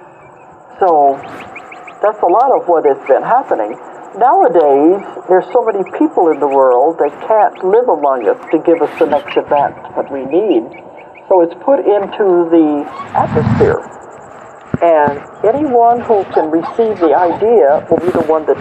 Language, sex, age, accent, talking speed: English, male, 60-79, American, 160 wpm